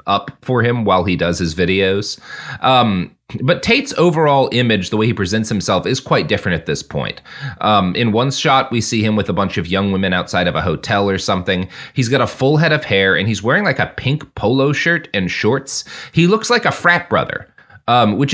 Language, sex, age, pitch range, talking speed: English, male, 30-49, 100-135 Hz, 225 wpm